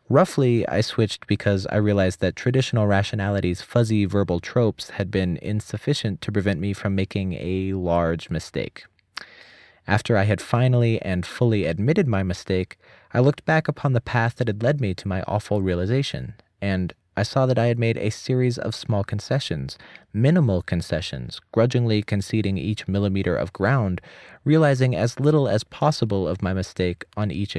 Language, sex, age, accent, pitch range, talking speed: English, male, 30-49, American, 95-125 Hz, 165 wpm